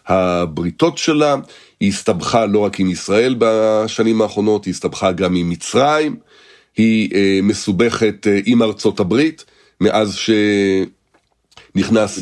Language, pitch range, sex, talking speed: Hebrew, 100-125 Hz, male, 110 wpm